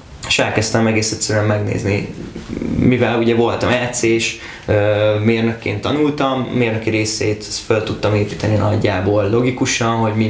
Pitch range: 105-115 Hz